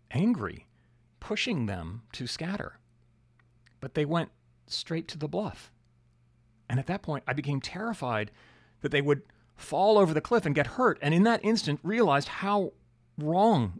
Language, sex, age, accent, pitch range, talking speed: English, male, 40-59, American, 110-140 Hz, 155 wpm